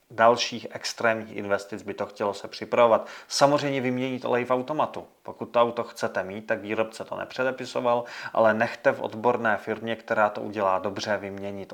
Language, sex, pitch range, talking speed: Czech, male, 105-120 Hz, 165 wpm